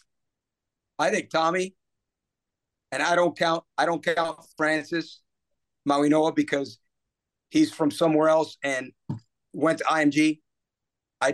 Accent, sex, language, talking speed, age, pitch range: American, male, English, 115 wpm, 50-69, 140-165 Hz